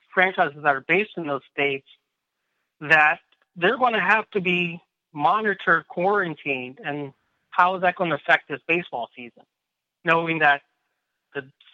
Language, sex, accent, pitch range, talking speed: English, male, American, 145-185 Hz, 150 wpm